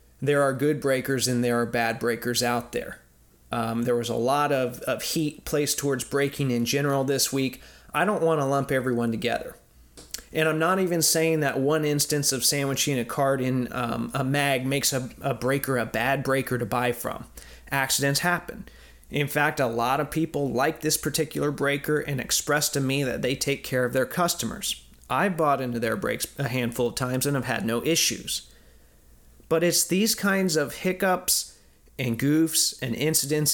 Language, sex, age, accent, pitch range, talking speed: English, male, 30-49, American, 125-150 Hz, 190 wpm